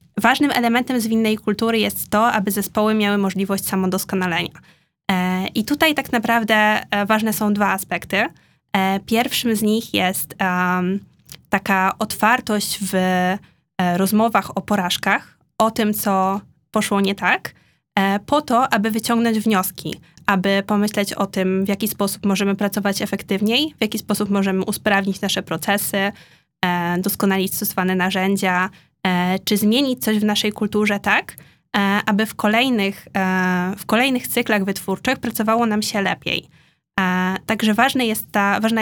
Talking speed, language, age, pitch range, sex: 125 wpm, Polish, 20-39, 190-220 Hz, female